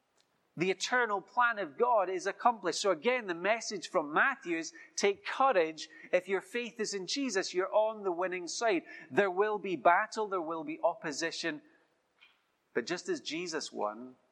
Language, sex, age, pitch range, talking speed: English, male, 30-49, 145-225 Hz, 170 wpm